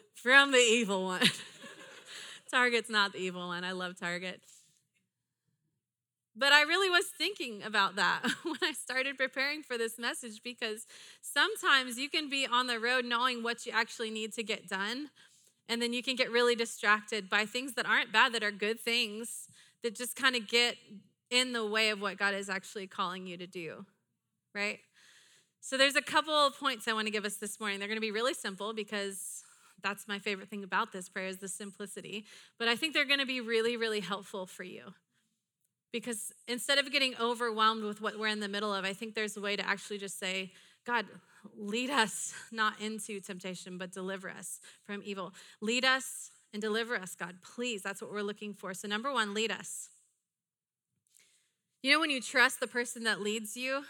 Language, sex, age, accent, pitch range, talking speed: English, female, 30-49, American, 200-245 Hz, 195 wpm